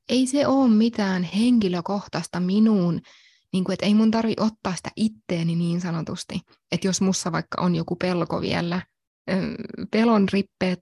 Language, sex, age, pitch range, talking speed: English, female, 20-39, 185-225 Hz, 150 wpm